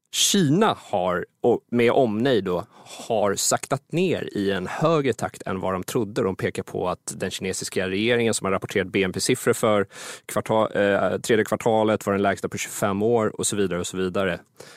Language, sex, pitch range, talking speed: Swedish, male, 95-115 Hz, 185 wpm